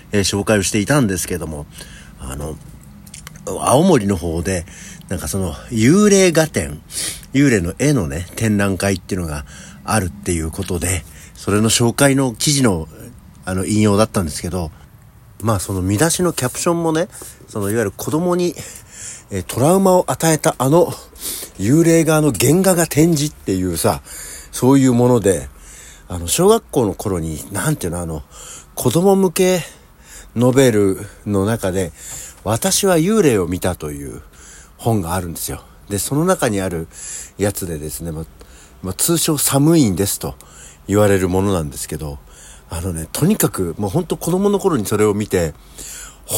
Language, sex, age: Japanese, male, 60-79